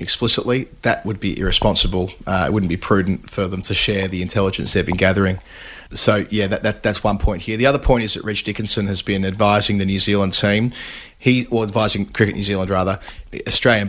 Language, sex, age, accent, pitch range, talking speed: English, male, 30-49, Australian, 95-110 Hz, 210 wpm